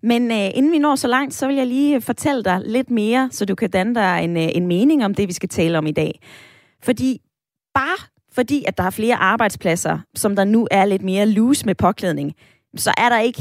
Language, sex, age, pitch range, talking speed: Danish, female, 20-39, 190-255 Hz, 235 wpm